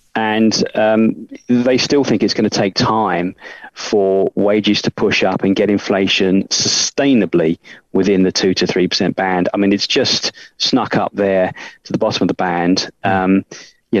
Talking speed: 170 wpm